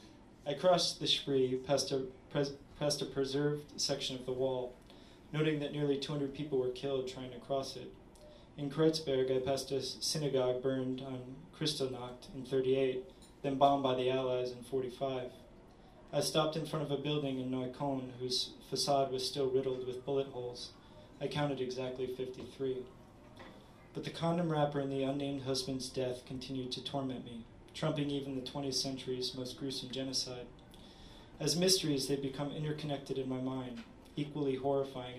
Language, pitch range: English, 130-145 Hz